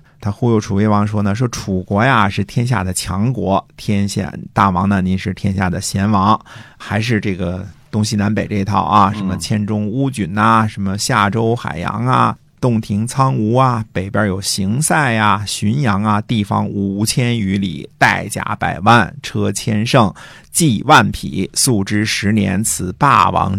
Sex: male